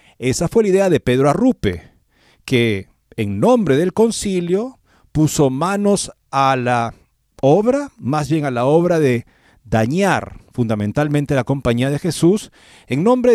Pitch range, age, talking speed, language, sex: 115-185 Hz, 40-59, 140 wpm, Spanish, male